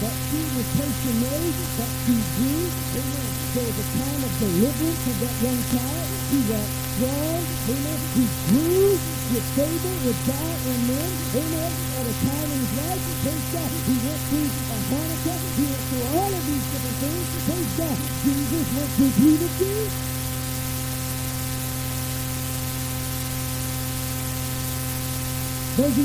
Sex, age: male, 50-69